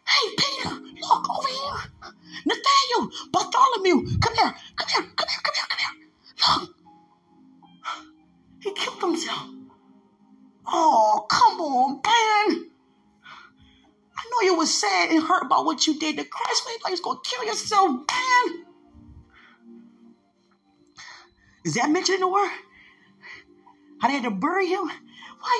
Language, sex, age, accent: English, female, 30-49, American